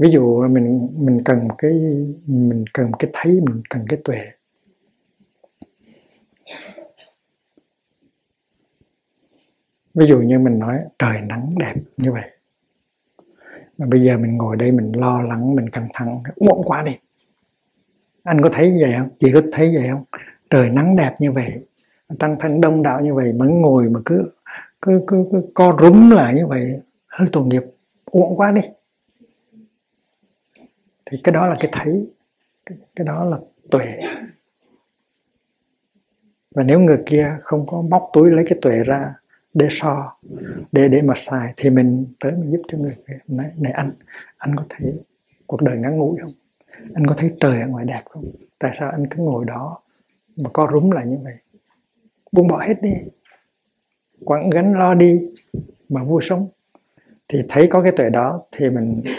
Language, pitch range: Vietnamese, 130-180 Hz